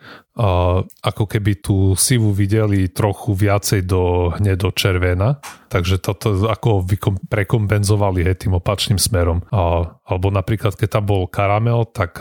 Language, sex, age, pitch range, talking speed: Slovak, male, 30-49, 90-105 Hz, 135 wpm